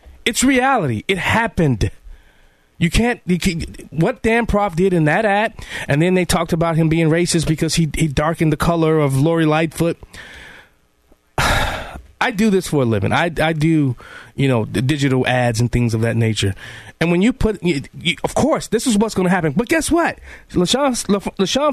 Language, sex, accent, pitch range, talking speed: English, male, American, 135-205 Hz, 190 wpm